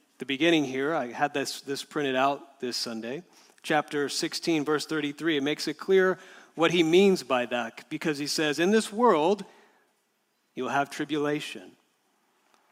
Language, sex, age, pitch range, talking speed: English, male, 40-59, 135-185 Hz, 160 wpm